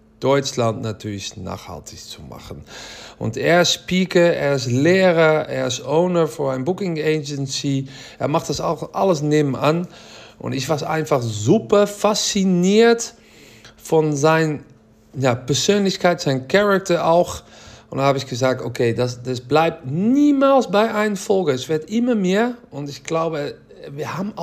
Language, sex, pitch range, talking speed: German, male, 125-180 Hz, 145 wpm